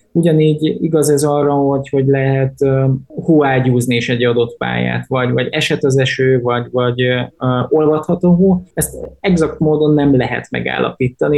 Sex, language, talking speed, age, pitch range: male, Hungarian, 155 wpm, 20-39, 125-145 Hz